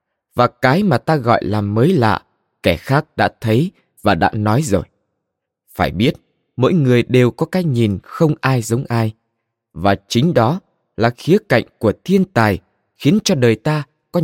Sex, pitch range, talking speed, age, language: male, 105-155 Hz, 175 wpm, 20-39, Vietnamese